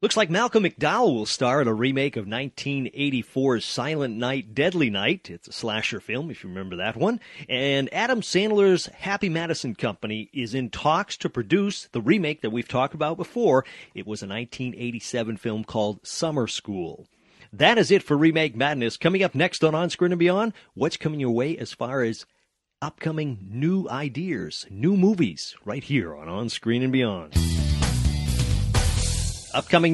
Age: 40-59